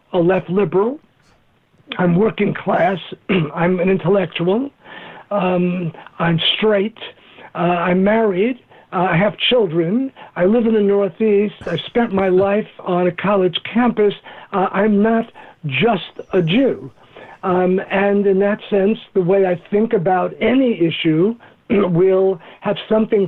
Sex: male